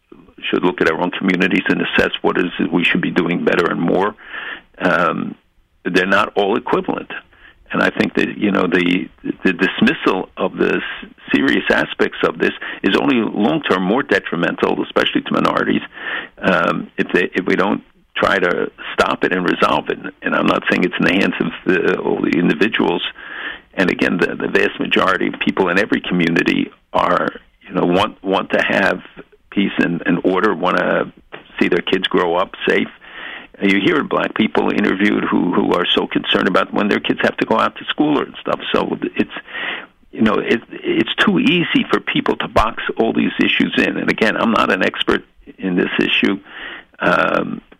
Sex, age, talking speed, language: male, 60-79, 190 wpm, English